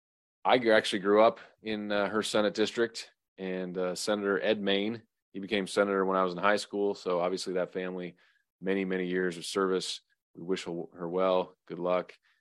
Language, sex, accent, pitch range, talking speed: English, male, American, 90-115 Hz, 180 wpm